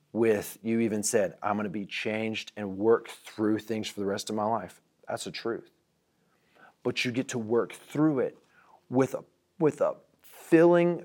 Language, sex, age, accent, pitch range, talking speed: English, male, 30-49, American, 105-130 Hz, 180 wpm